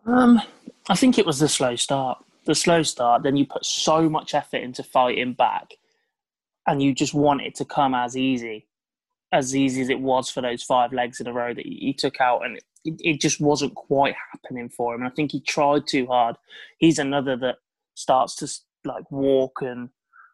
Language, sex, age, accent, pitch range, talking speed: English, male, 20-39, British, 130-155 Hz, 205 wpm